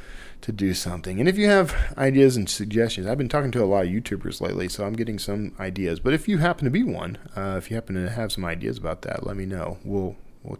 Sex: male